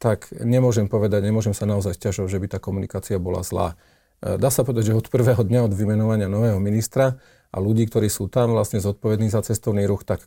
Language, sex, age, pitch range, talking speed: Slovak, male, 40-59, 100-120 Hz, 205 wpm